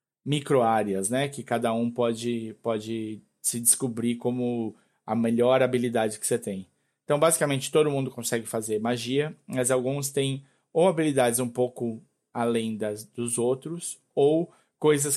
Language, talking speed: Portuguese, 140 wpm